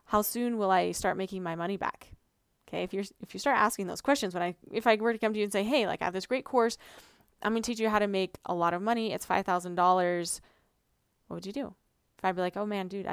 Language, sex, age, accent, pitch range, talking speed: English, female, 20-39, American, 185-230 Hz, 280 wpm